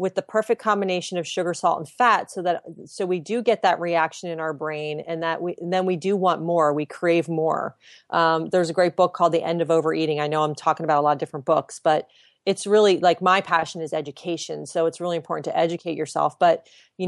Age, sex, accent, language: 30-49, female, American, English